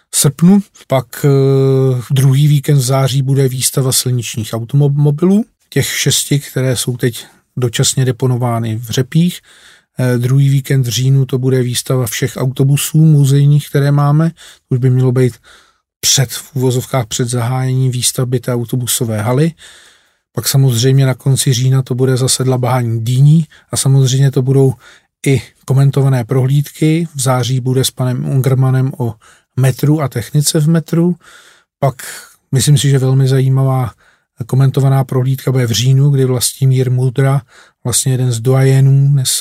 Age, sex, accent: 40-59, male, native